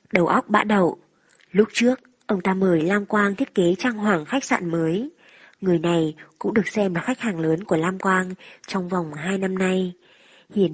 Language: Vietnamese